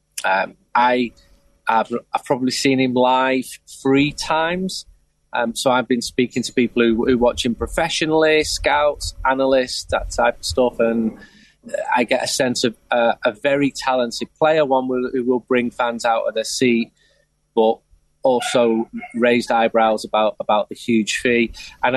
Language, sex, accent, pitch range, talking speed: English, male, British, 110-130 Hz, 160 wpm